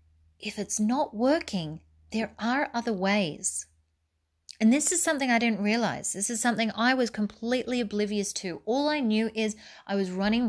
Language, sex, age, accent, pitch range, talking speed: English, female, 30-49, Australian, 160-210 Hz, 170 wpm